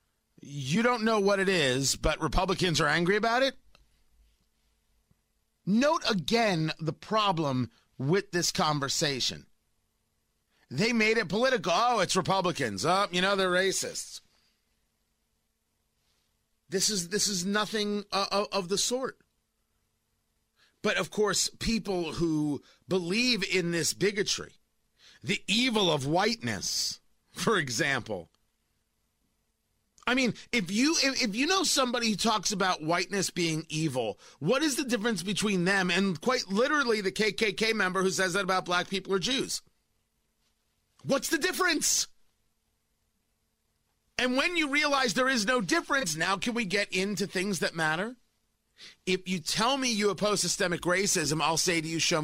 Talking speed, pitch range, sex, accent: 140 wpm, 175-230 Hz, male, American